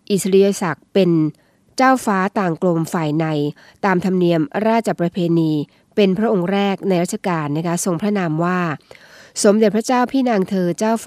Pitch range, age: 170-210 Hz, 20-39